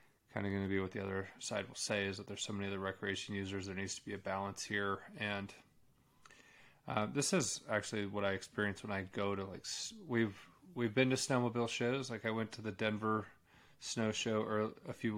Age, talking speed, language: 30-49, 215 wpm, English